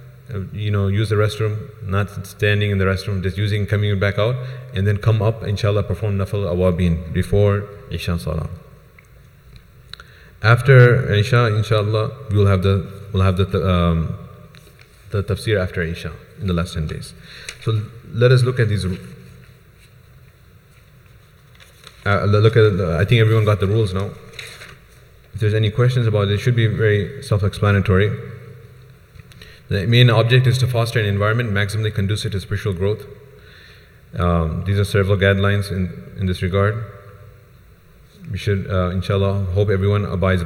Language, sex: English, male